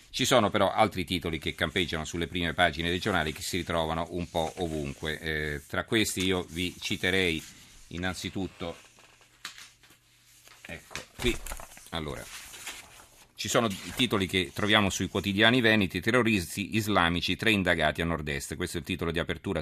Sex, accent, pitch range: male, native, 80-95 Hz